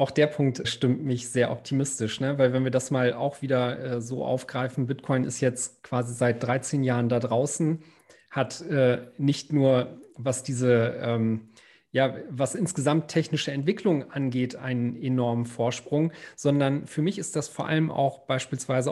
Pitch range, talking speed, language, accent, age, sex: 125-150 Hz, 165 wpm, German, German, 40-59, male